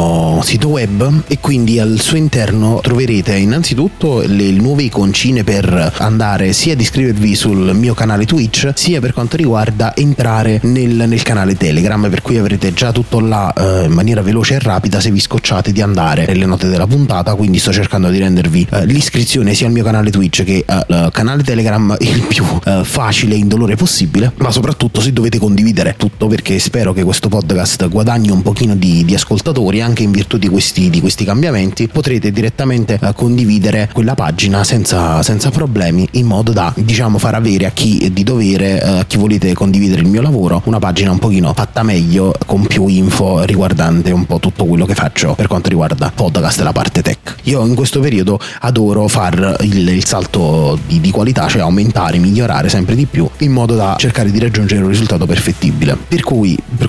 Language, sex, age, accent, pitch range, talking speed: Italian, male, 30-49, native, 95-120 Hz, 190 wpm